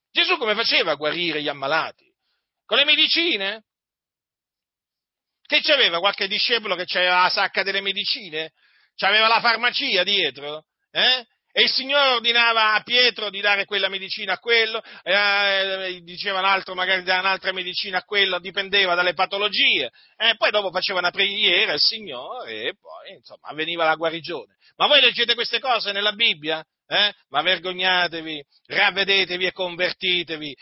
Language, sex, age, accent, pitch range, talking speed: Italian, male, 40-59, native, 180-235 Hz, 150 wpm